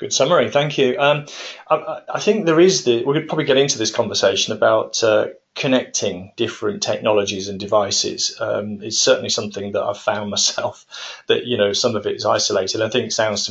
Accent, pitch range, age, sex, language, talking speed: British, 110-150 Hz, 30-49, male, English, 205 wpm